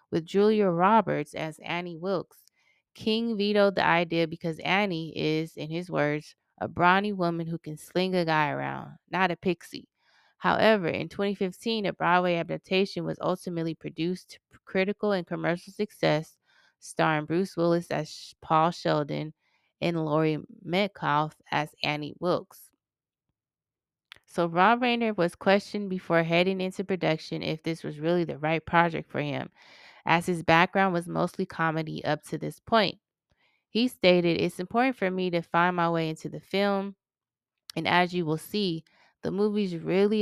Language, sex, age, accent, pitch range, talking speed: English, female, 20-39, American, 155-190 Hz, 155 wpm